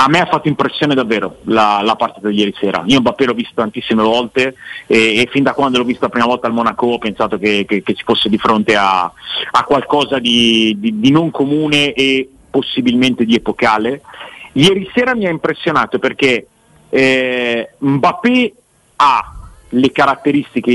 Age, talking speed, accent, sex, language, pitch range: 40-59, 175 wpm, native, male, Italian, 120-155 Hz